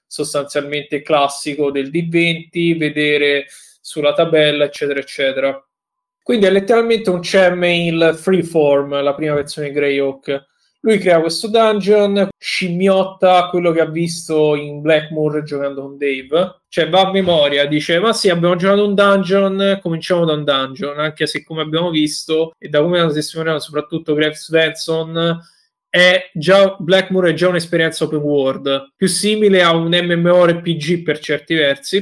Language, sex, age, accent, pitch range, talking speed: Italian, male, 20-39, native, 150-180 Hz, 150 wpm